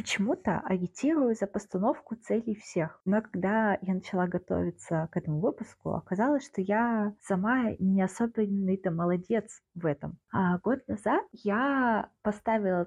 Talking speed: 130 wpm